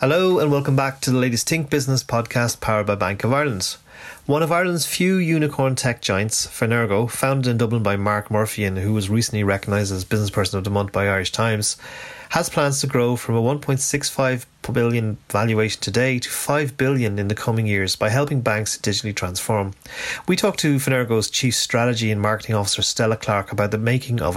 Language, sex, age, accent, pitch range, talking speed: English, male, 30-49, Irish, 110-135 Hz, 195 wpm